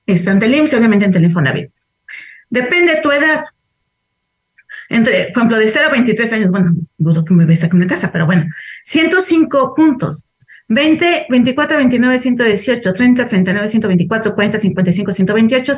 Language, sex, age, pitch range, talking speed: Spanish, female, 40-59, 195-275 Hz, 150 wpm